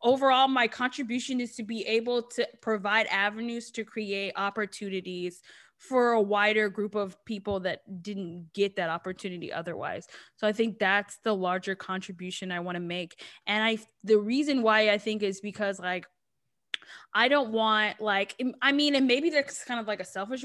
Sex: female